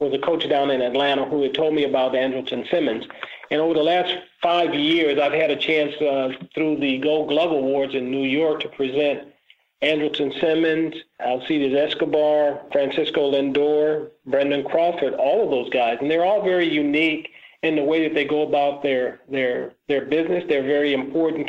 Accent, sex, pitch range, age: American, male, 140-165 Hz, 40-59